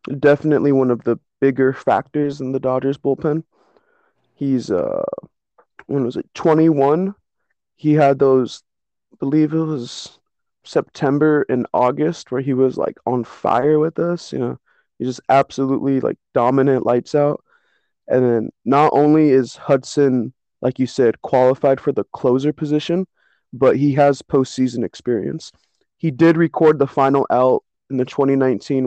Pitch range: 130-155 Hz